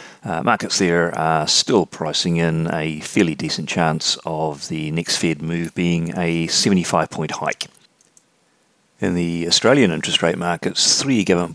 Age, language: 40-59, English